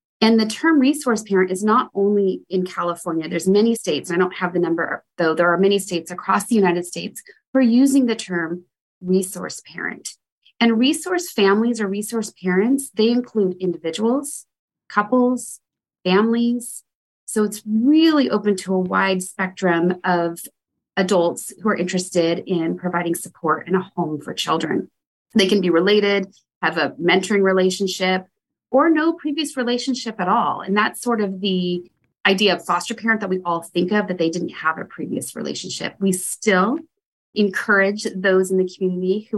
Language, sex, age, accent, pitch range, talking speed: English, female, 30-49, American, 175-225 Hz, 165 wpm